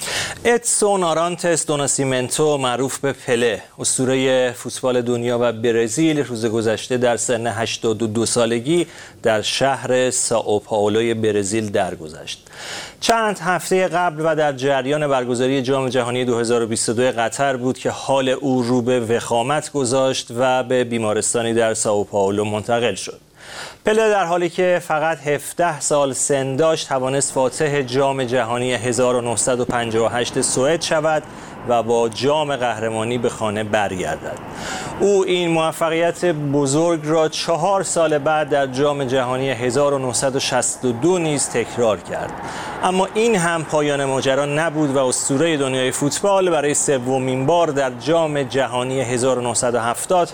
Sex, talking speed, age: male, 125 wpm, 40-59